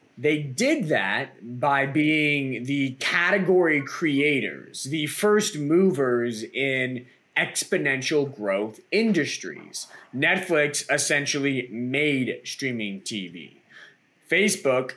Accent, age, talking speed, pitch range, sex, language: American, 20-39, 85 wpm, 125-160 Hz, male, English